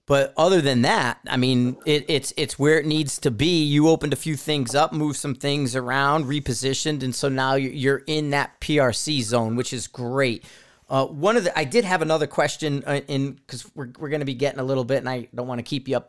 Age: 40-59